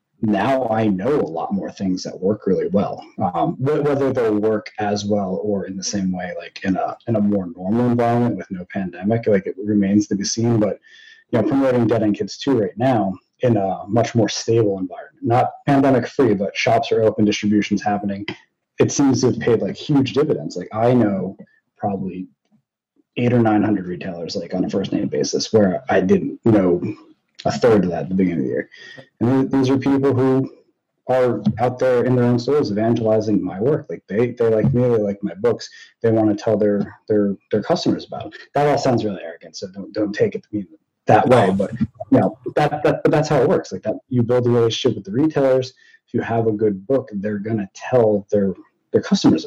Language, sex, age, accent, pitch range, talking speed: English, male, 30-49, American, 105-125 Hz, 215 wpm